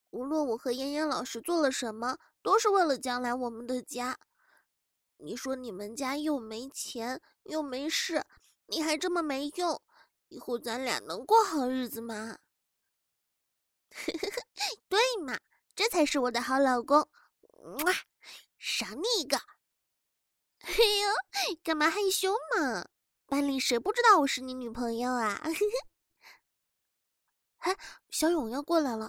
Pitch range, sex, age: 255-360 Hz, female, 20-39